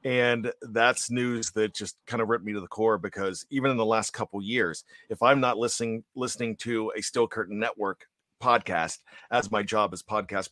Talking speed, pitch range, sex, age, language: 200 wpm, 115-150 Hz, male, 40-59, English